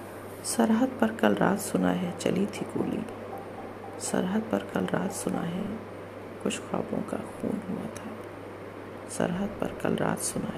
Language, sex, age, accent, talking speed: Hindi, female, 50-69, native, 145 wpm